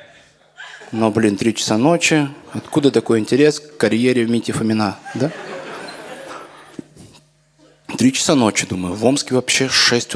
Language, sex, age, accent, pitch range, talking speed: Russian, male, 20-39, native, 110-150 Hz, 130 wpm